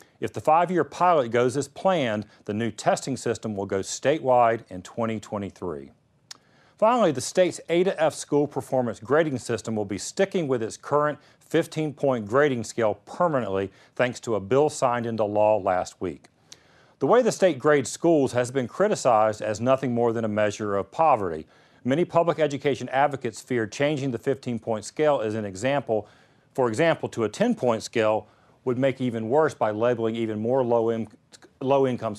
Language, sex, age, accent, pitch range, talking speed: English, male, 40-59, American, 110-145 Hz, 160 wpm